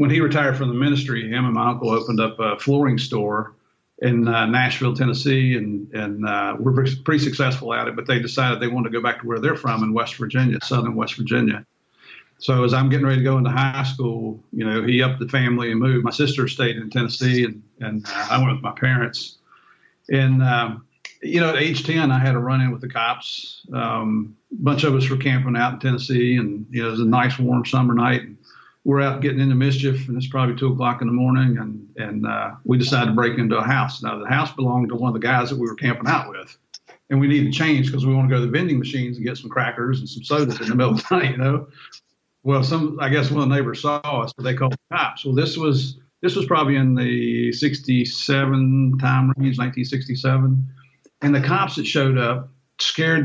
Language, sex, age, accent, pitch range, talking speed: English, male, 50-69, American, 120-135 Hz, 240 wpm